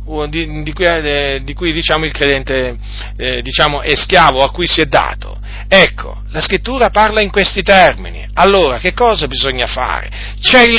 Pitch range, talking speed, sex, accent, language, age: 145-220 Hz, 170 wpm, male, native, Italian, 40-59